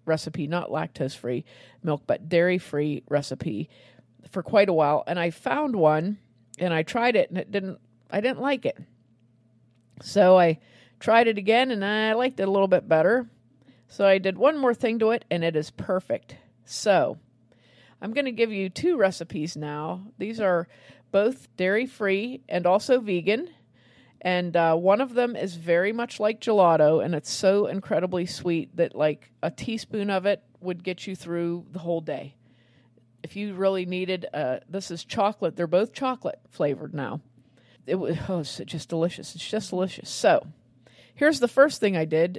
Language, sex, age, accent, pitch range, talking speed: English, female, 40-59, American, 150-205 Hz, 180 wpm